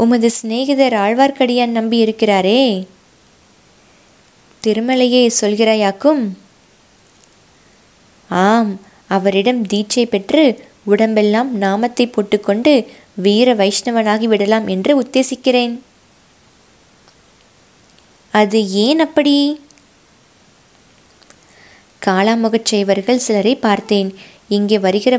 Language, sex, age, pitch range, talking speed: Tamil, female, 20-39, 205-250 Hz, 65 wpm